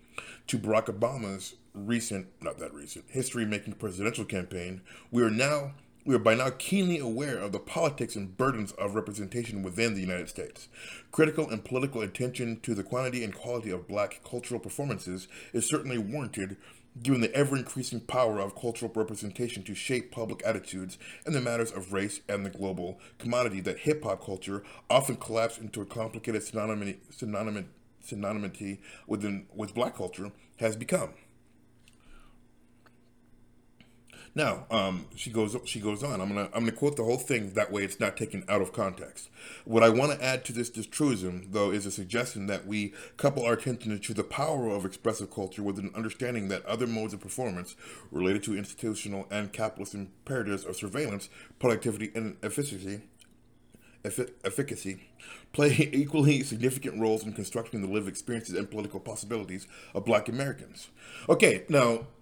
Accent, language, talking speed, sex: American, English, 160 wpm, male